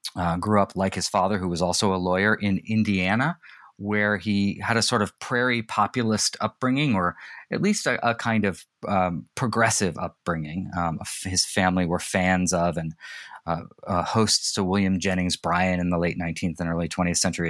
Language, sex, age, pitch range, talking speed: English, male, 30-49, 90-115 Hz, 185 wpm